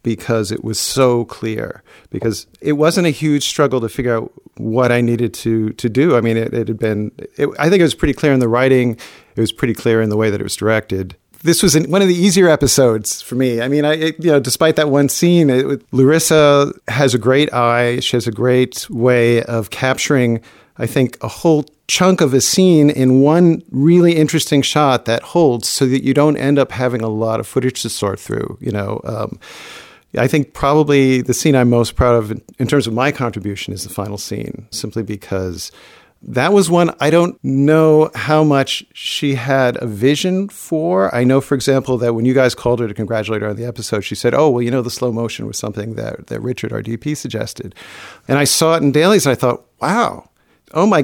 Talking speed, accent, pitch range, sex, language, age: 225 wpm, American, 115-150 Hz, male, English, 50-69